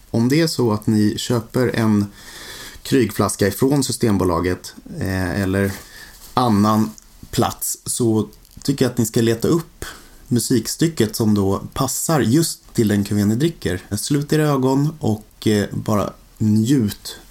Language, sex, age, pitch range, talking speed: English, male, 30-49, 100-130 Hz, 130 wpm